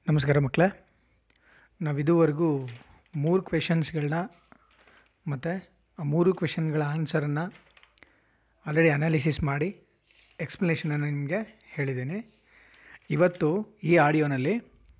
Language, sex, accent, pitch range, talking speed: Kannada, male, native, 145-180 Hz, 80 wpm